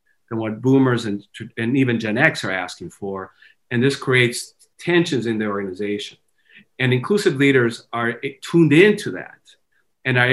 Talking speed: 155 wpm